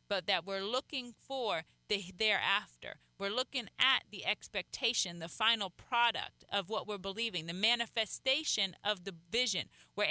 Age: 30-49